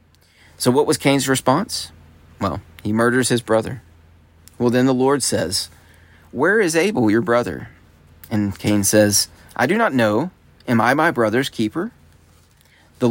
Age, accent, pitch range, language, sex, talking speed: 30-49, American, 90-125 Hz, English, male, 150 wpm